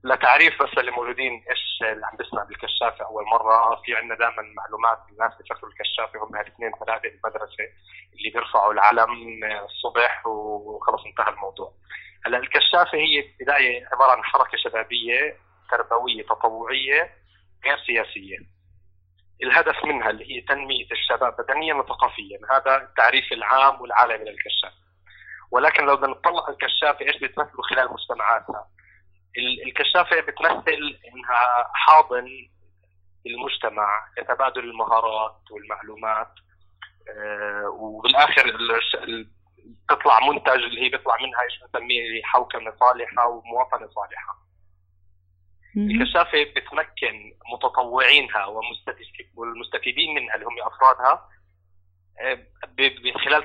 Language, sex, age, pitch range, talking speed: Arabic, male, 30-49, 95-125 Hz, 105 wpm